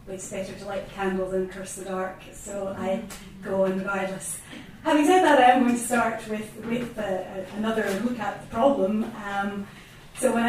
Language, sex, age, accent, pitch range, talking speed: English, female, 30-49, British, 190-240 Hz, 195 wpm